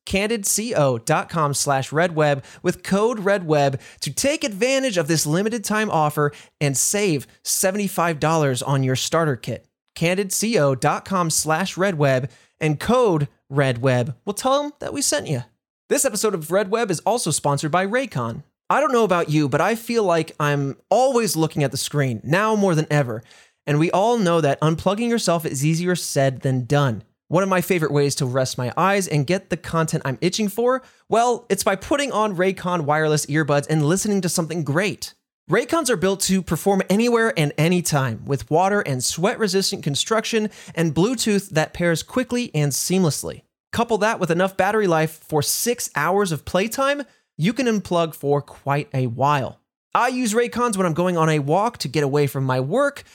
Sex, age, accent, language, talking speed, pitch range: male, 20-39, American, English, 180 wpm, 145-205 Hz